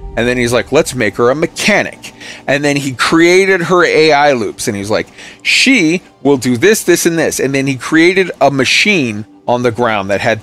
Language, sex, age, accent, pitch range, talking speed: English, male, 40-59, American, 130-210 Hz, 215 wpm